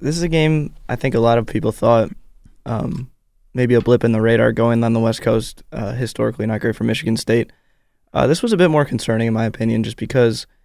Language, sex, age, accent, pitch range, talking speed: English, male, 20-39, American, 110-125 Hz, 235 wpm